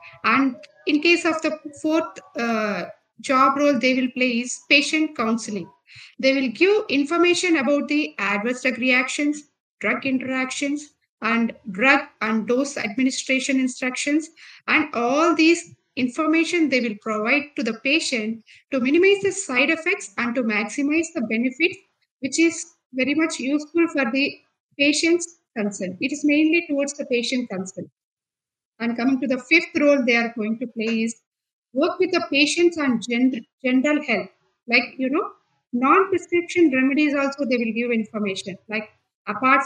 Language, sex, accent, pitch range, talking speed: Indonesian, female, Indian, 230-300 Hz, 150 wpm